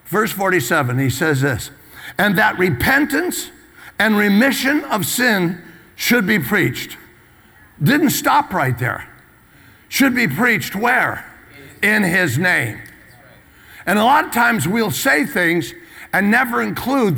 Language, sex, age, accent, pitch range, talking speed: English, male, 60-79, American, 160-225 Hz, 130 wpm